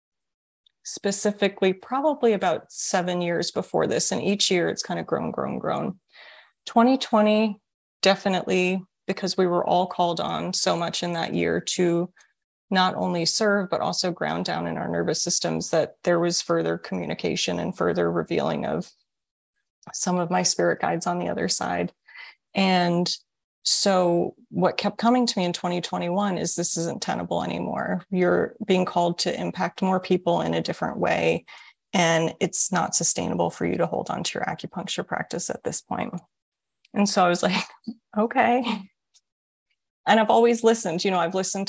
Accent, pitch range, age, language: American, 170-205 Hz, 30-49, English